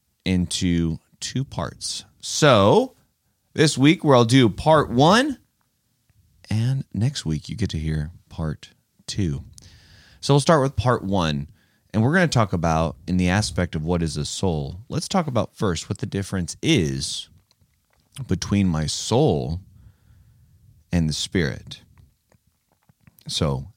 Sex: male